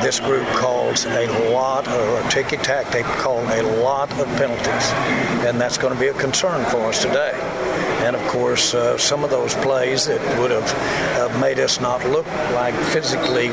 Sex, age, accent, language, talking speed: male, 60-79, American, English, 180 wpm